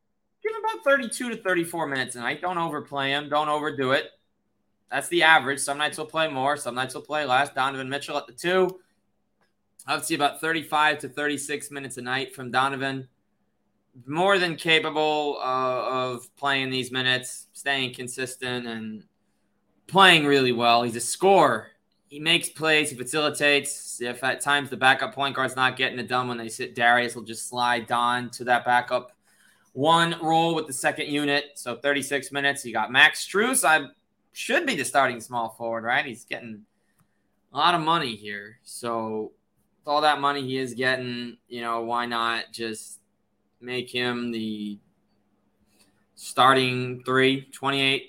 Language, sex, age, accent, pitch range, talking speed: English, male, 20-39, American, 125-150 Hz, 165 wpm